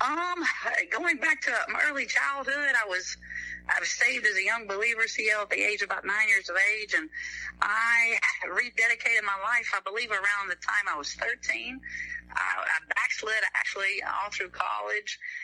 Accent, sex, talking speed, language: American, female, 180 wpm, English